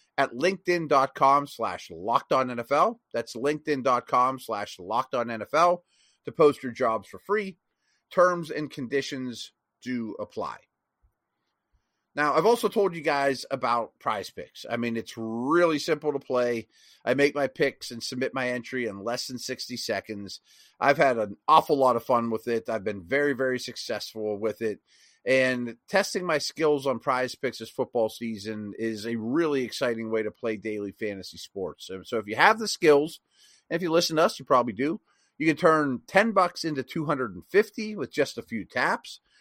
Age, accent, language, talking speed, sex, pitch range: 30-49, American, English, 175 wpm, male, 115-155 Hz